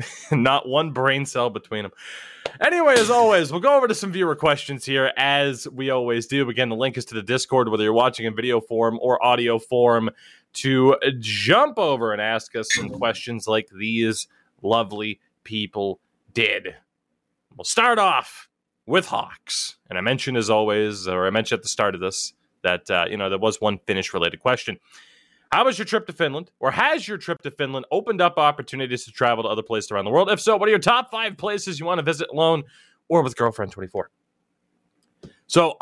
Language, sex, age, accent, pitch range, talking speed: English, male, 20-39, American, 110-150 Hz, 200 wpm